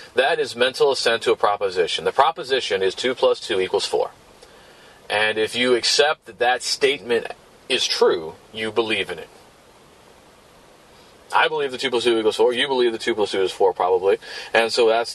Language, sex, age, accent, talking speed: English, male, 30-49, American, 190 wpm